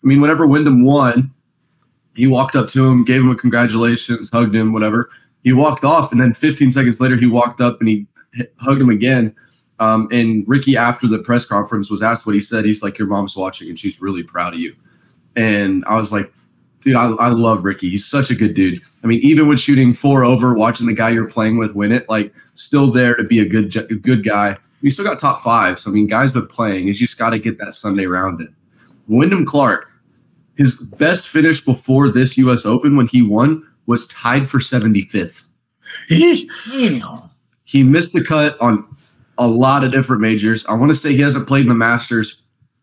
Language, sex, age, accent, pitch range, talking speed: English, male, 20-39, American, 110-135 Hz, 210 wpm